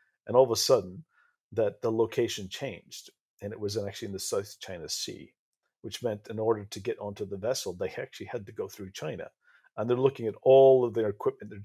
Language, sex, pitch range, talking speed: English, male, 100-130 Hz, 220 wpm